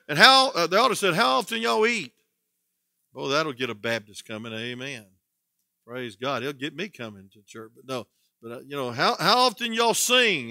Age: 50-69